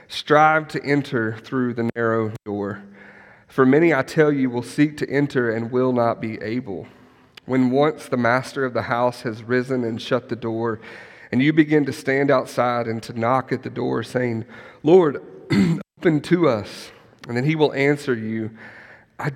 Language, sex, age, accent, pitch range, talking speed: English, male, 40-59, American, 115-145 Hz, 180 wpm